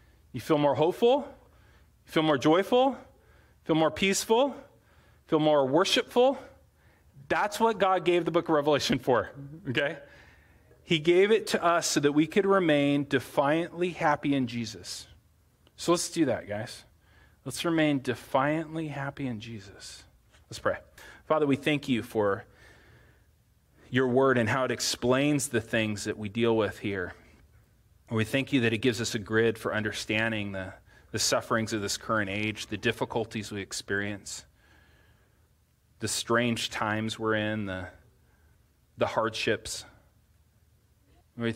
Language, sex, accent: English, male, American